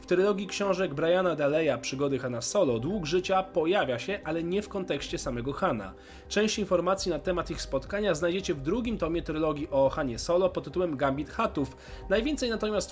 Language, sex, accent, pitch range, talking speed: Polish, male, native, 135-190 Hz, 175 wpm